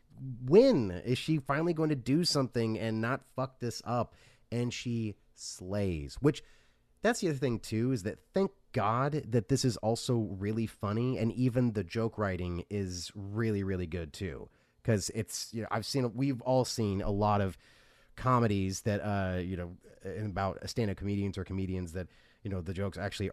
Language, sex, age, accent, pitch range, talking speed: English, male, 30-49, American, 95-120 Hz, 185 wpm